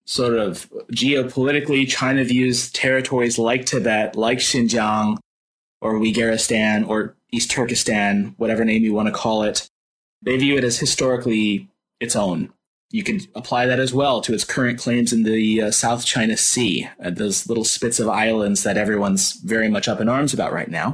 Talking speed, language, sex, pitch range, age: 175 wpm, English, male, 110-130 Hz, 20-39